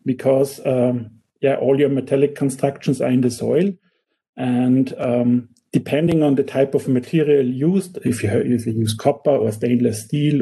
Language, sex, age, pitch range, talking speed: English, male, 50-69, 120-140 Hz, 175 wpm